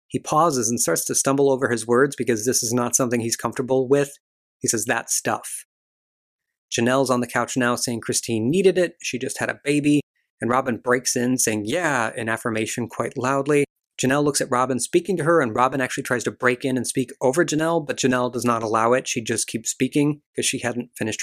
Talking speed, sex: 220 wpm, male